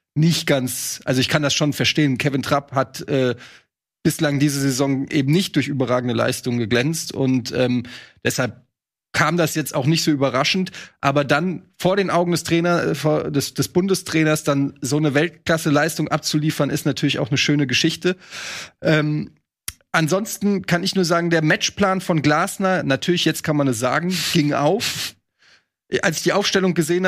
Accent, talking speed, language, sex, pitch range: German, 165 wpm, German, male, 135-165 Hz